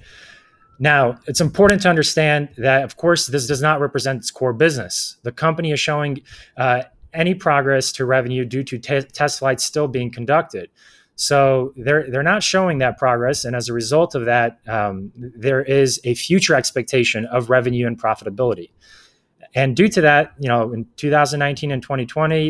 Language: English